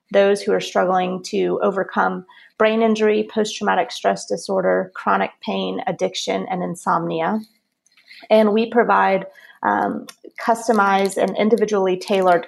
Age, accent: 30-49, American